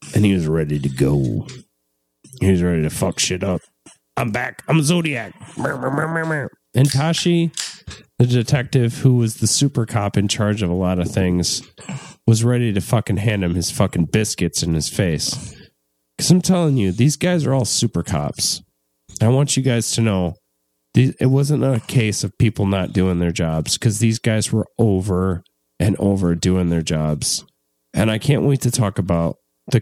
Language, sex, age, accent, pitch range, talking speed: English, male, 30-49, American, 85-120 Hz, 180 wpm